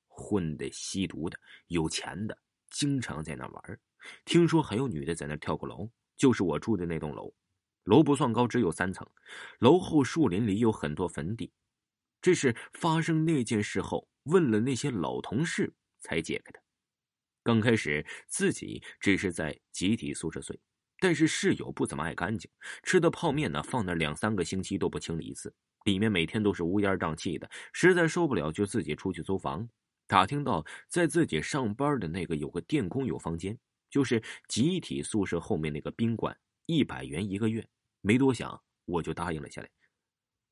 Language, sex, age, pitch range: Chinese, male, 30-49, 85-120 Hz